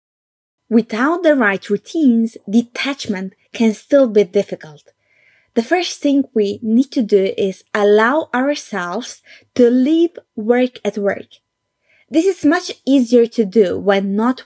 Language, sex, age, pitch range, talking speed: English, female, 20-39, 205-270 Hz, 135 wpm